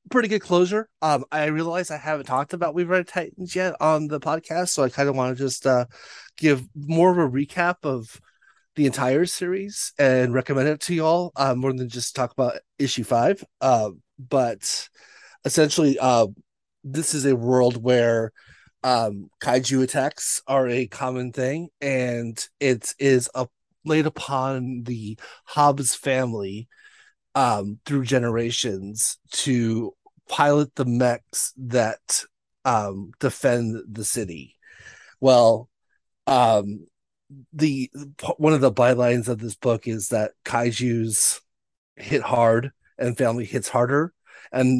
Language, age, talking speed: English, 30-49, 140 wpm